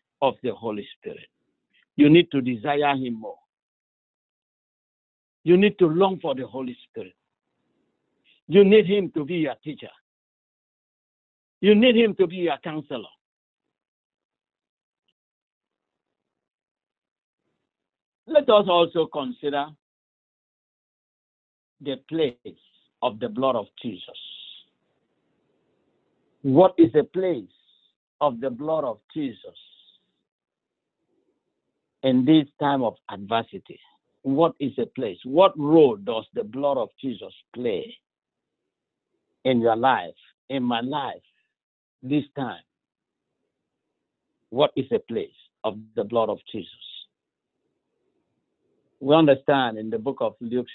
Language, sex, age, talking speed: English, male, 50-69, 110 wpm